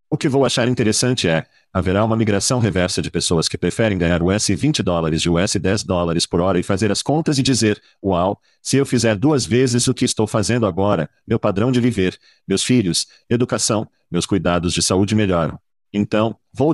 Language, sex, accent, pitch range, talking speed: Portuguese, male, Brazilian, 100-125 Hz, 195 wpm